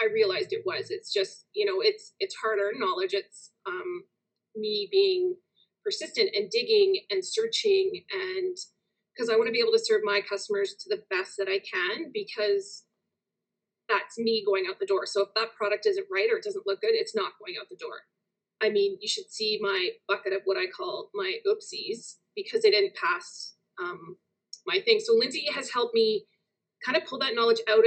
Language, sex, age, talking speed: English, female, 30-49, 200 wpm